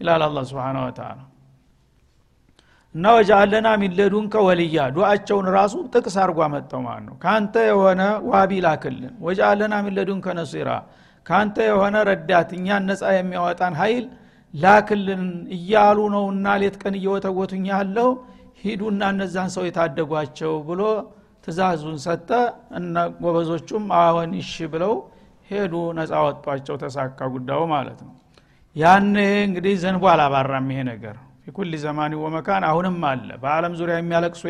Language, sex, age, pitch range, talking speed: Amharic, male, 60-79, 170-200 Hz, 80 wpm